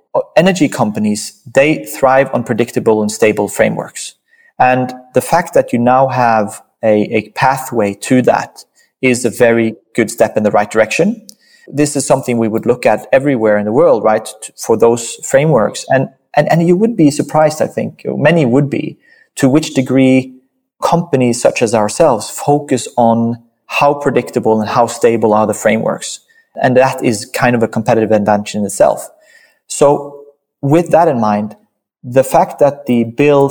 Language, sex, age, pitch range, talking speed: English, male, 30-49, 110-140 Hz, 170 wpm